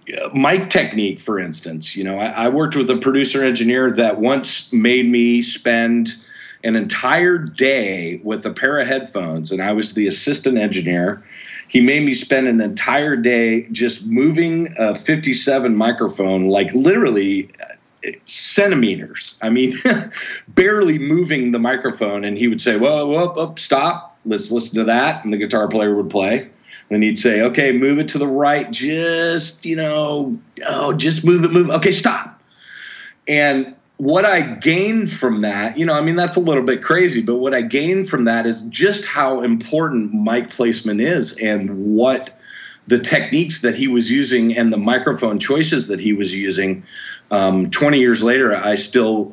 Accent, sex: American, male